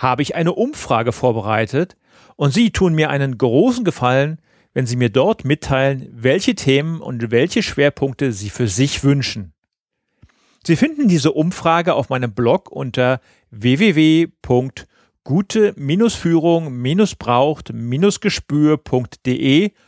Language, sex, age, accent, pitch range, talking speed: German, male, 40-59, German, 120-170 Hz, 105 wpm